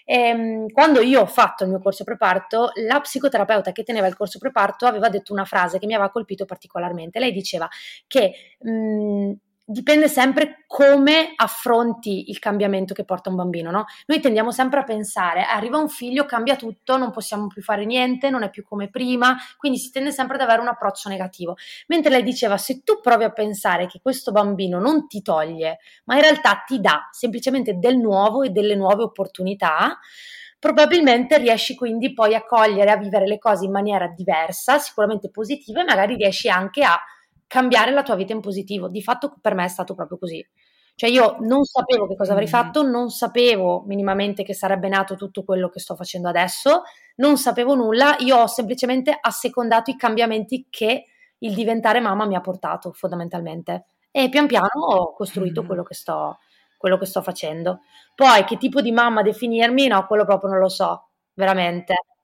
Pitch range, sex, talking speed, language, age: 195-255 Hz, female, 180 wpm, Italian, 20-39